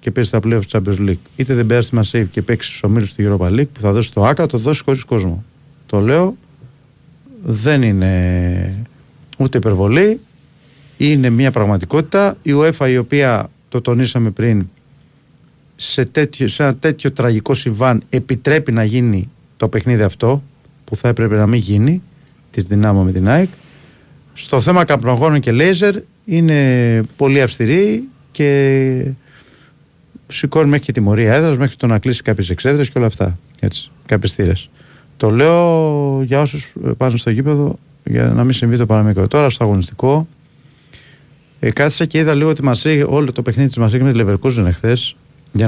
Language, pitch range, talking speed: Greek, 115-145 Hz, 165 wpm